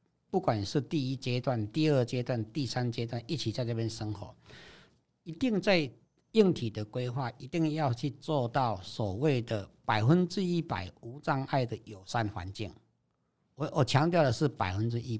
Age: 60-79